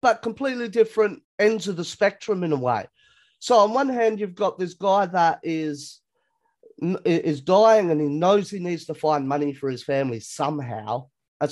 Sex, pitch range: male, 145-200 Hz